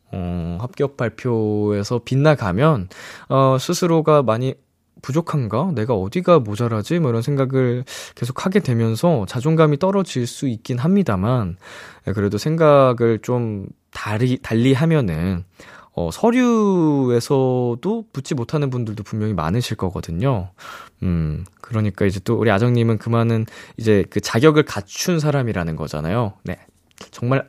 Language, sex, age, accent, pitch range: Korean, male, 20-39, native, 105-155 Hz